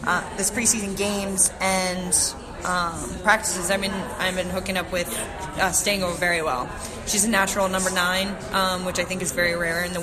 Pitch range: 175-195 Hz